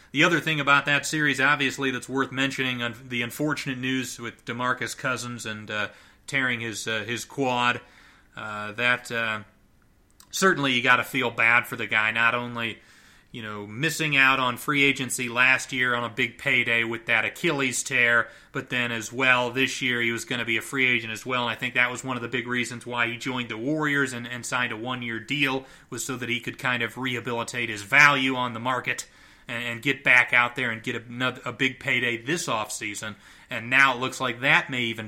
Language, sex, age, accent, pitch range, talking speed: English, male, 30-49, American, 120-135 Hz, 215 wpm